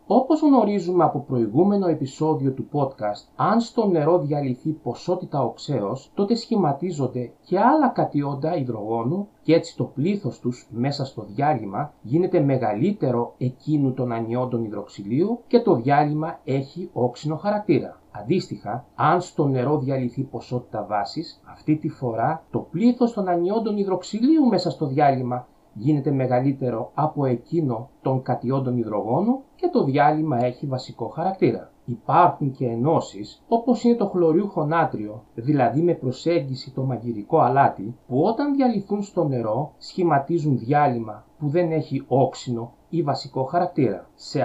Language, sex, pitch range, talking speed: Greek, male, 125-175 Hz, 135 wpm